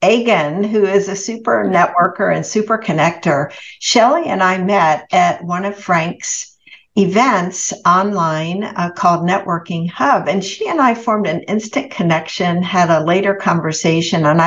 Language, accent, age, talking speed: English, American, 60-79, 150 wpm